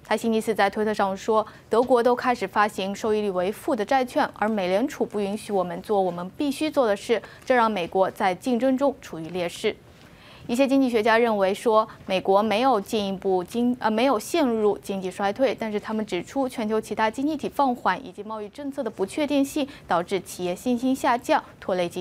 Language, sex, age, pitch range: English, female, 20-39, 195-245 Hz